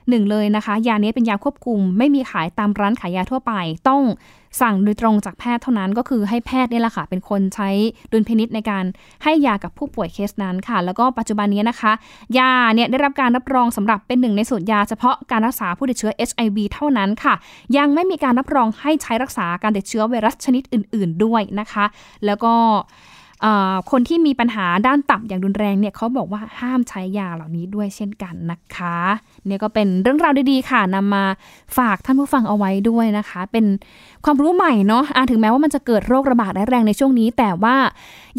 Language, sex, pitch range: Thai, female, 205-255 Hz